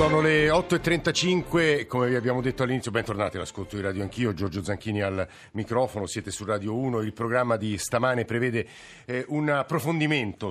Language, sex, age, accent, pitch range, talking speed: Italian, male, 50-69, native, 110-135 Hz, 165 wpm